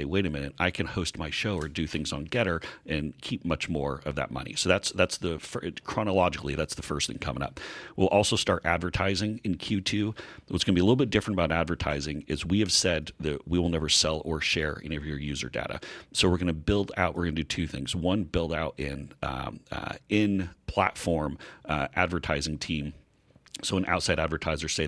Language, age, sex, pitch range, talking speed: English, 40-59, male, 75-90 Hz, 220 wpm